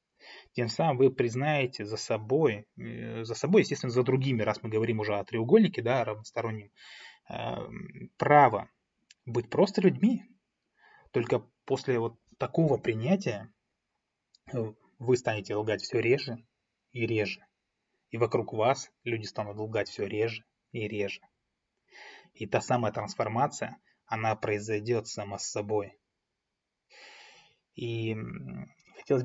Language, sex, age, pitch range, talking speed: Russian, male, 20-39, 110-130 Hz, 115 wpm